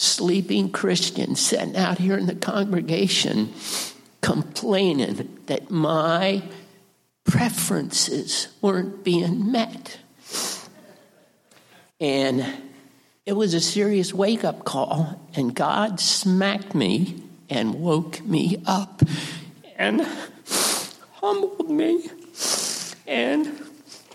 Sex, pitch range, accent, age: male, 155-195 Hz, American, 60-79